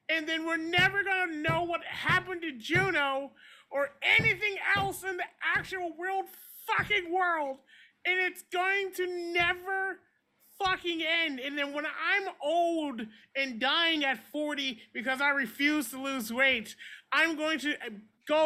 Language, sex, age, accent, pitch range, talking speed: English, male, 30-49, American, 255-345 Hz, 150 wpm